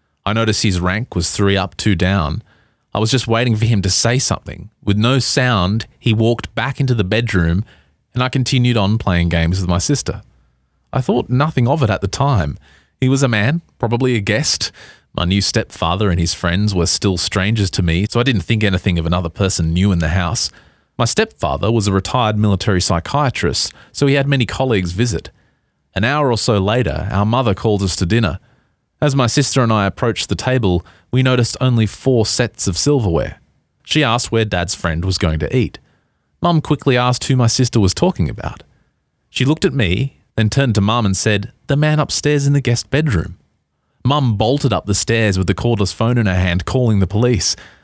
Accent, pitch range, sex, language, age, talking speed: Australian, 95-125 Hz, male, English, 30-49, 205 wpm